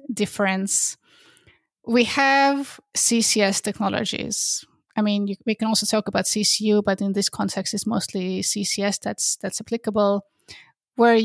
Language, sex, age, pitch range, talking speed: English, female, 20-39, 195-235 Hz, 130 wpm